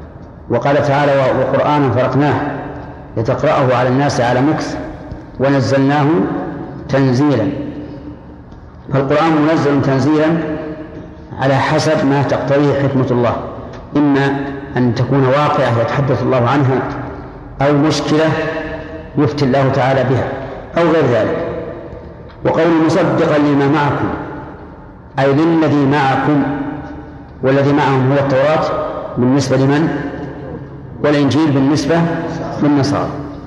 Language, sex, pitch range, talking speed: Arabic, male, 135-155 Hz, 95 wpm